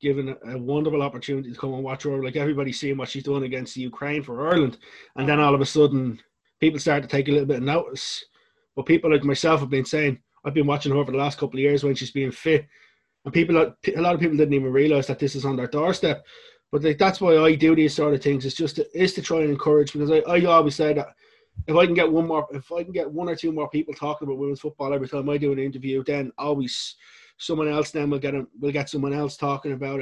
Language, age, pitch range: English, 20-39, 140-165 Hz